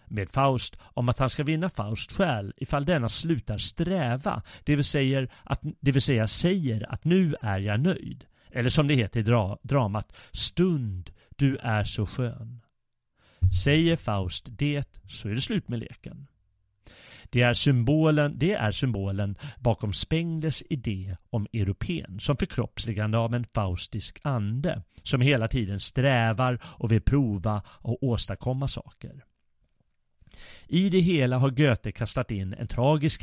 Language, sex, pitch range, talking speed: Swedish, male, 105-140 Hz, 150 wpm